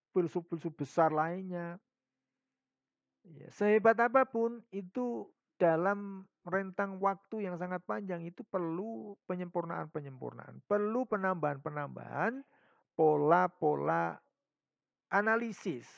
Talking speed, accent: 75 wpm, native